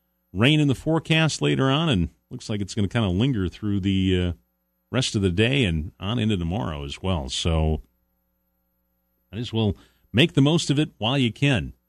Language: English